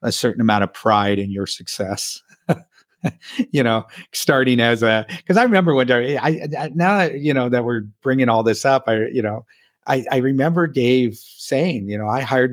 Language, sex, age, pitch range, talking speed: English, male, 50-69, 105-125 Hz, 195 wpm